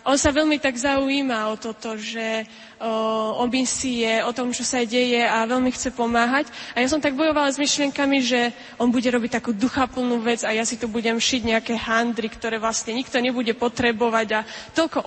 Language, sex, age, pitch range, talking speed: Slovak, female, 20-39, 230-270 Hz, 190 wpm